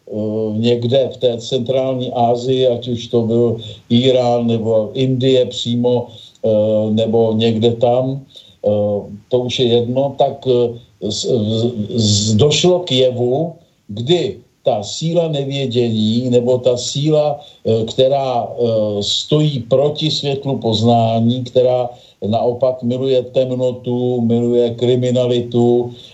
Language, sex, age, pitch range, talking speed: Slovak, male, 50-69, 115-145 Hz, 95 wpm